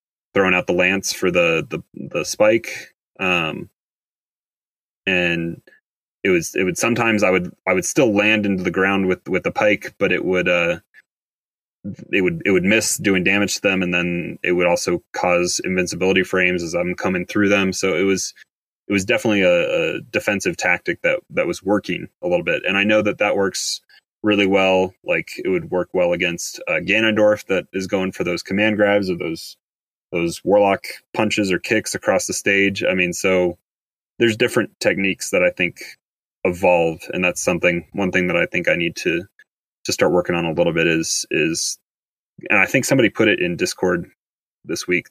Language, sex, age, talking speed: English, male, 20-39, 195 wpm